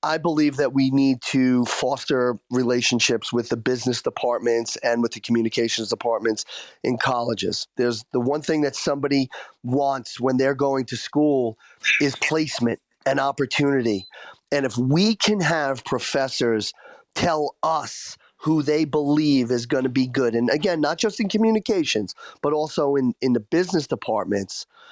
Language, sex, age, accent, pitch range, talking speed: English, male, 30-49, American, 120-145 Hz, 155 wpm